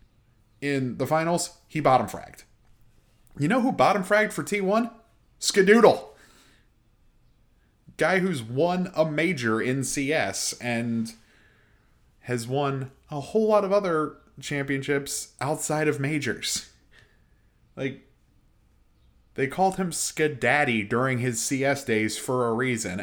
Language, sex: English, male